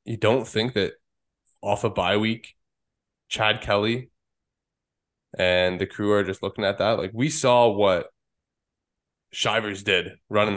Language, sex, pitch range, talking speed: English, male, 95-115 Hz, 140 wpm